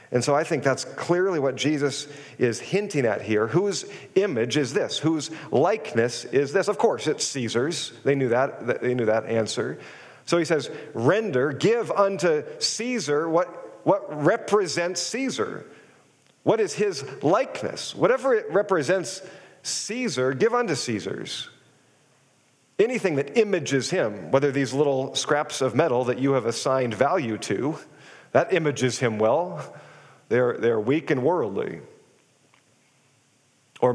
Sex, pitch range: male, 130-190 Hz